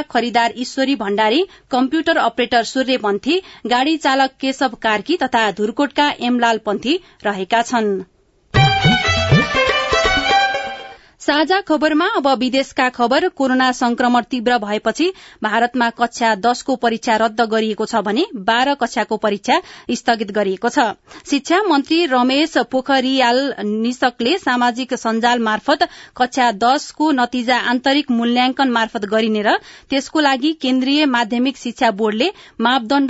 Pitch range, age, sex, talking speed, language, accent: 235-285 Hz, 30-49, female, 110 wpm, English, Indian